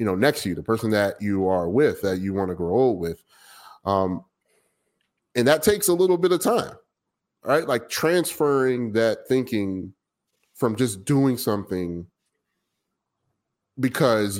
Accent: American